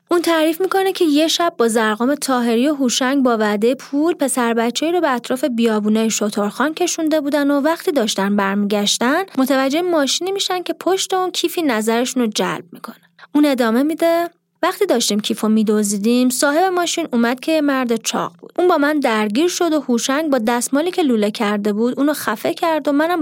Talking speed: 180 wpm